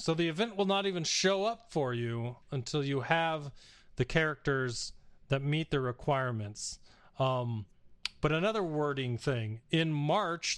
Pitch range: 135-165 Hz